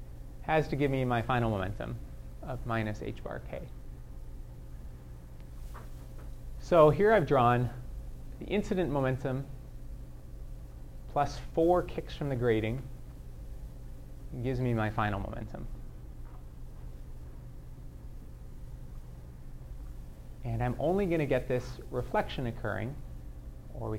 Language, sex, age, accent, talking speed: English, male, 30-49, American, 105 wpm